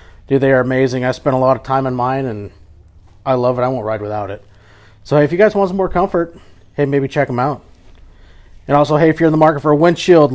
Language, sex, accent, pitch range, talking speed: English, male, American, 120-155 Hz, 265 wpm